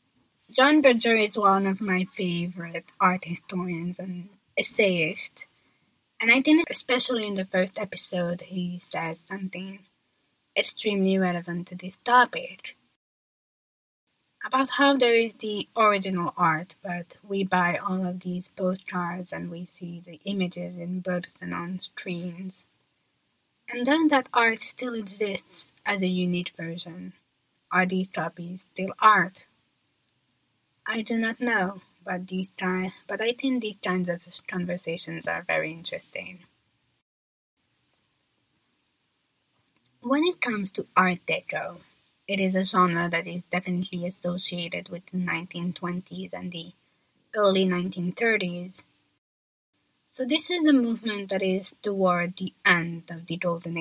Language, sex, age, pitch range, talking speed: English, female, 20-39, 175-205 Hz, 130 wpm